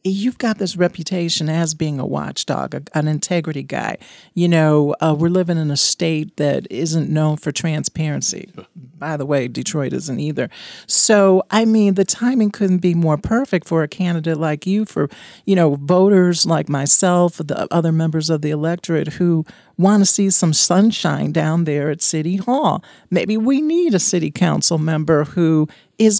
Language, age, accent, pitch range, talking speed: English, 50-69, American, 160-200 Hz, 175 wpm